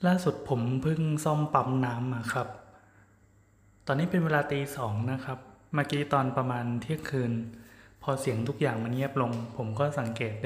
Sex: male